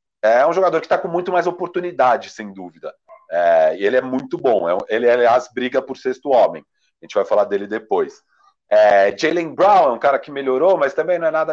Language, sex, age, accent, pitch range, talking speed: Portuguese, male, 40-59, Brazilian, 135-190 Hz, 210 wpm